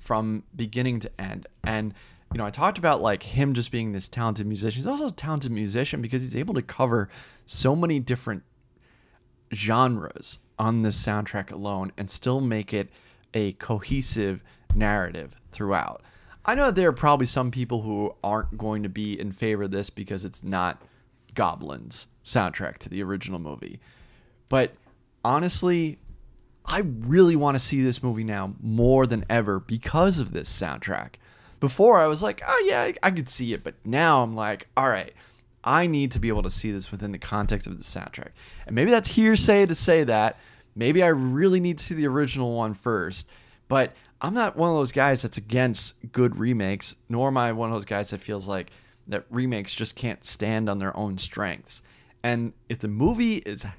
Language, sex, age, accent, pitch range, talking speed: English, male, 20-39, American, 105-130 Hz, 185 wpm